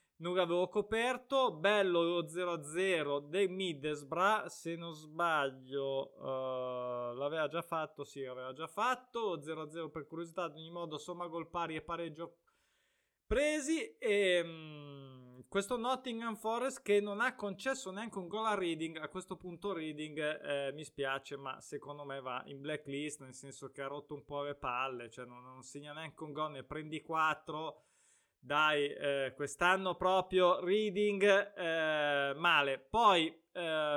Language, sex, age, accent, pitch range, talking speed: Italian, male, 20-39, native, 150-200 Hz, 155 wpm